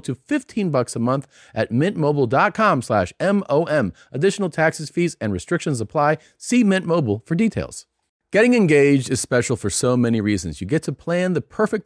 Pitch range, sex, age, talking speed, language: 105-150 Hz, male, 40-59, 170 wpm, English